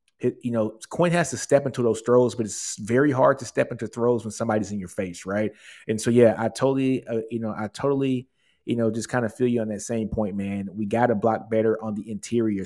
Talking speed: 250 wpm